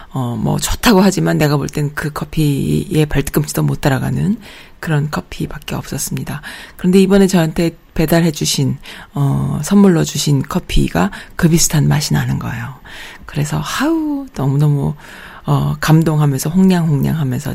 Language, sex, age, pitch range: Korean, female, 40-59, 145-185 Hz